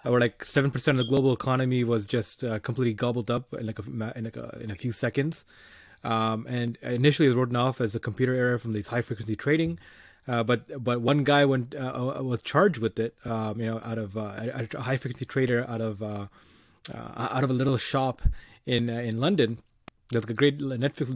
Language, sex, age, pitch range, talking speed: English, male, 20-39, 115-140 Hz, 220 wpm